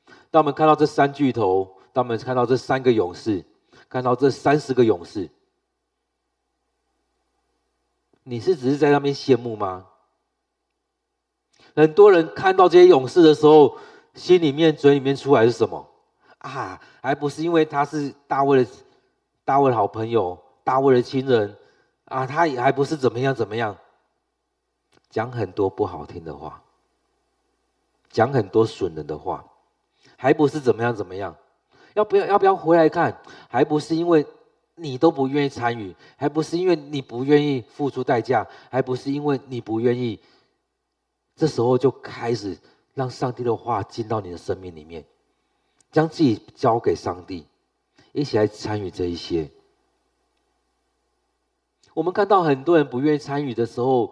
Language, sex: Chinese, male